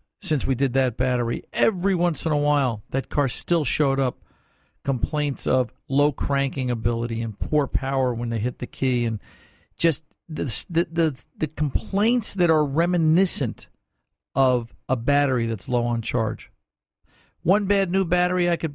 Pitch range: 120-165 Hz